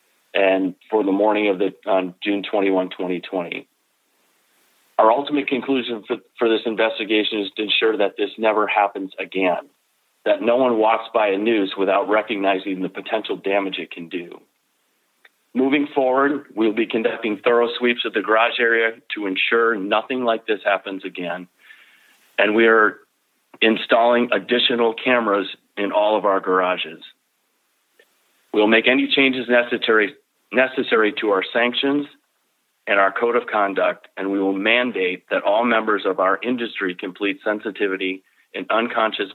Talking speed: 150 wpm